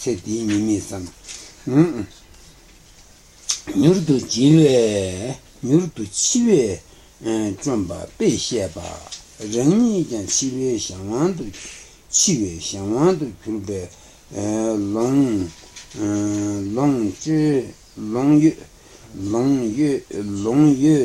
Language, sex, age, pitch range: Italian, male, 60-79, 95-125 Hz